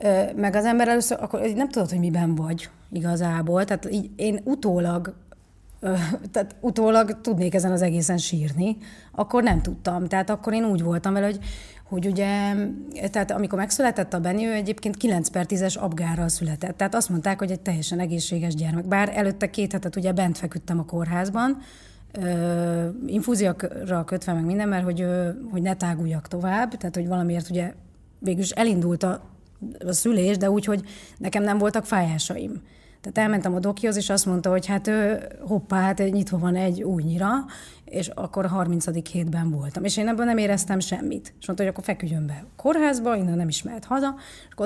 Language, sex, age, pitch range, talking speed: Hungarian, female, 30-49, 175-215 Hz, 180 wpm